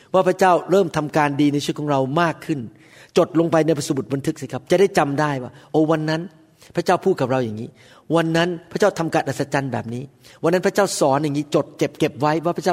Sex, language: male, Thai